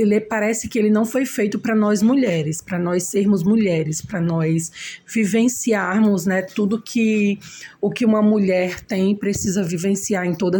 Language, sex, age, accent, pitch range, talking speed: Portuguese, female, 20-39, Brazilian, 175-220 Hz, 160 wpm